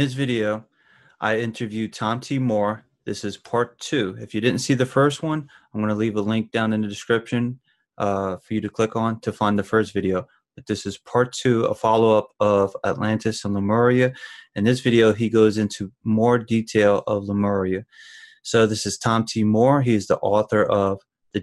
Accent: American